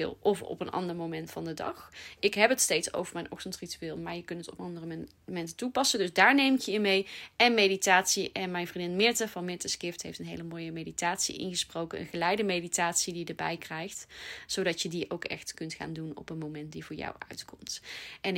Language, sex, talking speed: Dutch, female, 220 wpm